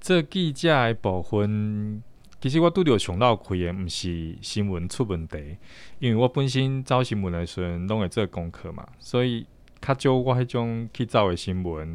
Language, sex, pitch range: Chinese, male, 90-115 Hz